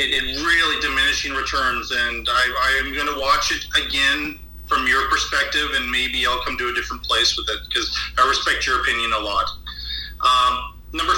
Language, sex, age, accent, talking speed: English, male, 40-59, American, 195 wpm